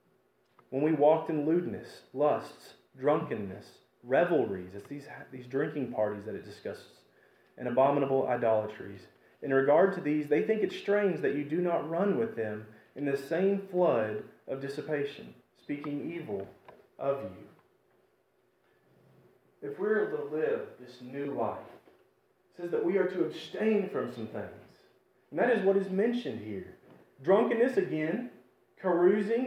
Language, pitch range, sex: English, 145-210 Hz, male